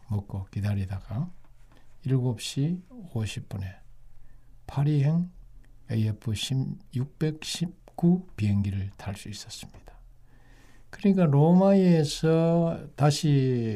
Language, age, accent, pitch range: Korean, 60-79, native, 110-145 Hz